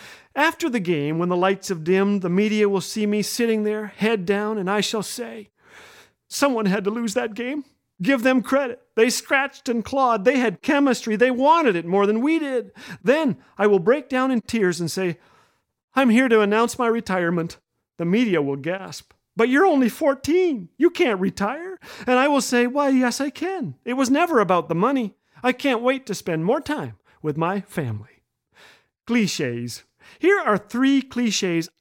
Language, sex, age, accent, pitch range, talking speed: English, male, 40-59, American, 190-270 Hz, 185 wpm